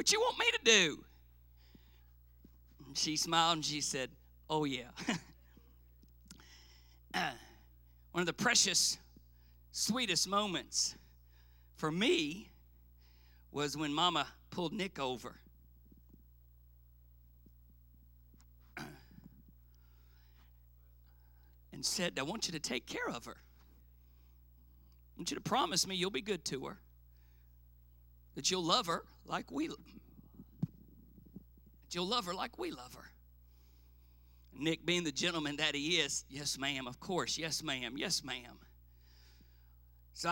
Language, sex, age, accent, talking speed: English, male, 50-69, American, 120 wpm